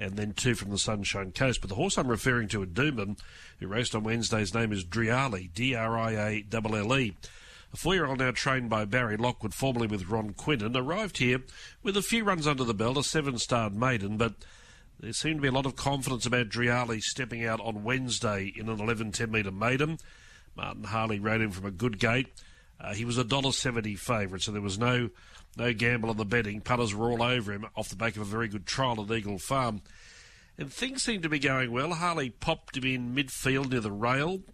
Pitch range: 105-130 Hz